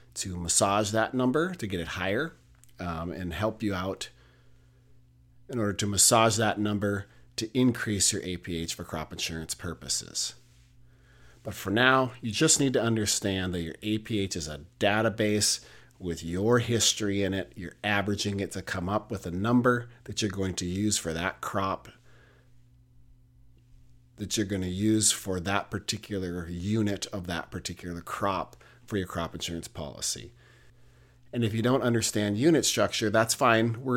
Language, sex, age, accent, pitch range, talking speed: English, male, 40-59, American, 95-120 Hz, 160 wpm